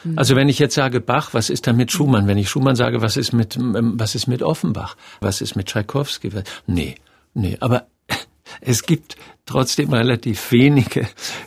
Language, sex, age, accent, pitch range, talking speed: German, male, 50-69, German, 110-140 Hz, 180 wpm